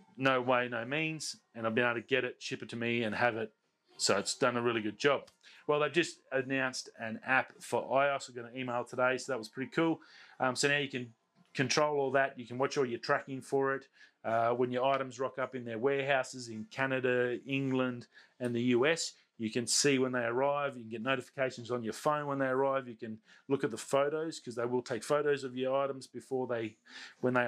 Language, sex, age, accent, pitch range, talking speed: English, male, 30-49, Australian, 115-135 Hz, 235 wpm